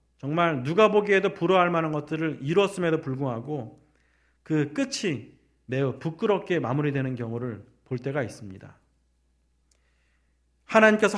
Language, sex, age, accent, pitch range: Korean, male, 40-59, native, 140-220 Hz